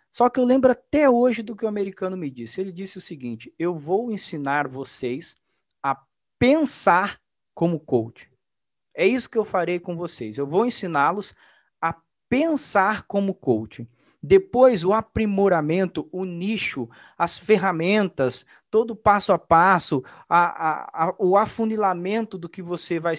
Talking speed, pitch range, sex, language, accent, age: 145 wpm, 160-220 Hz, male, Portuguese, Brazilian, 20-39